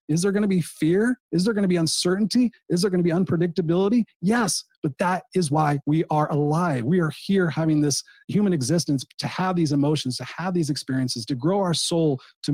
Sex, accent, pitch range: male, American, 140-165 Hz